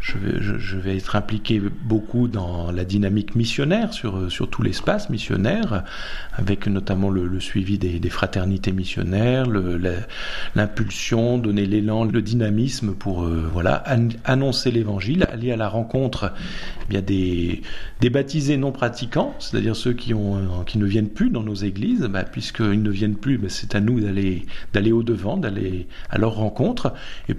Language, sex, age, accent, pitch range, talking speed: French, male, 50-69, French, 95-115 Hz, 170 wpm